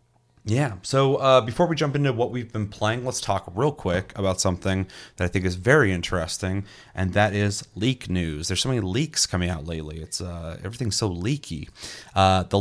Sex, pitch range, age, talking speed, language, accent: male, 90-115 Hz, 30-49, 200 wpm, English, American